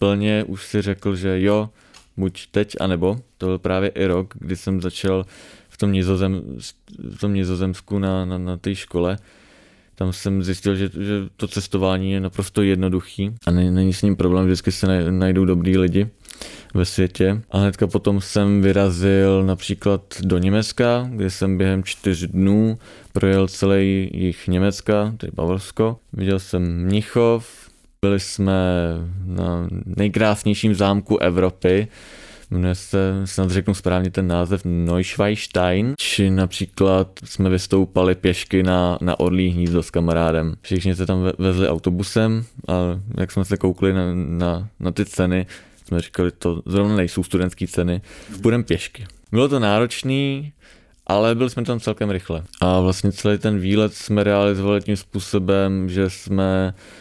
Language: Czech